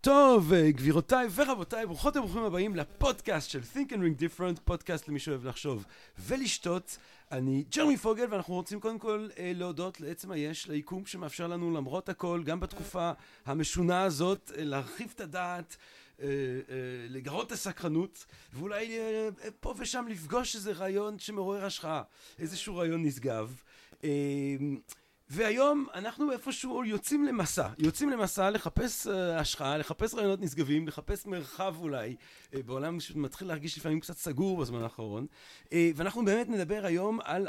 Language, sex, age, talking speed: Hebrew, male, 40-59, 135 wpm